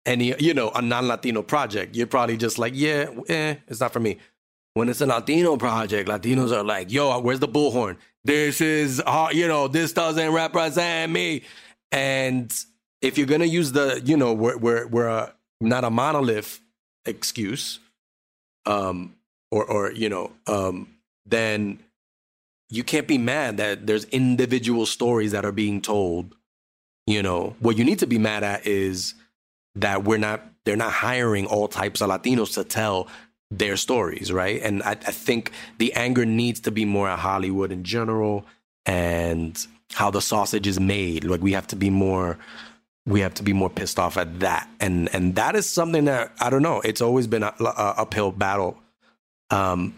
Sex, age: male, 30-49